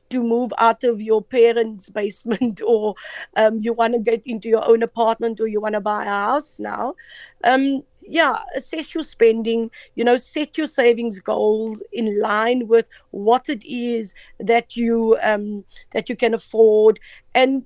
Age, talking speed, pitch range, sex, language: 50-69, 170 wpm, 225-270 Hz, female, English